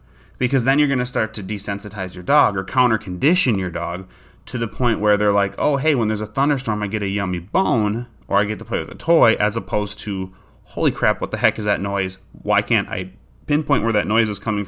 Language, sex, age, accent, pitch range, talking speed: English, male, 30-49, American, 100-125 Hz, 245 wpm